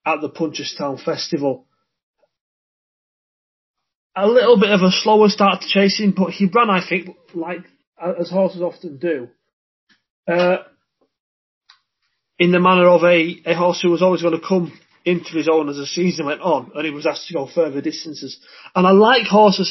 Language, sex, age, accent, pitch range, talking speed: English, male, 30-49, British, 145-180 Hz, 175 wpm